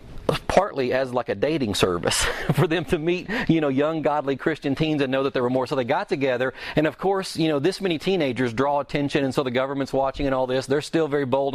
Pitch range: 125-160 Hz